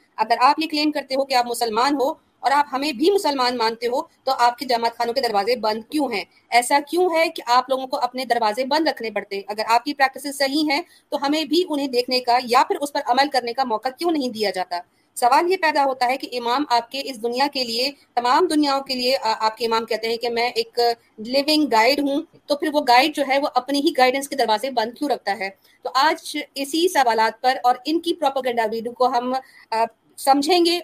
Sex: female